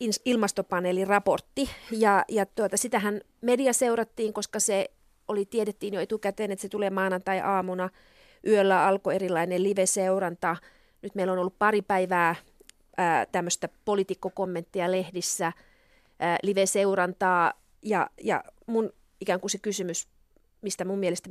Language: Finnish